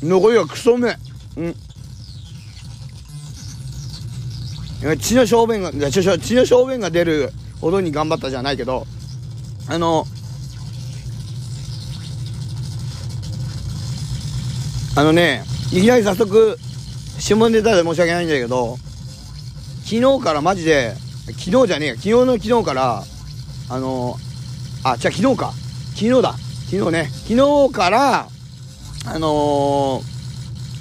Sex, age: male, 40-59